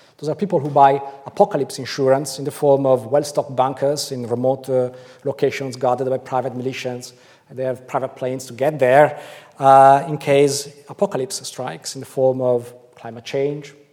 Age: 40-59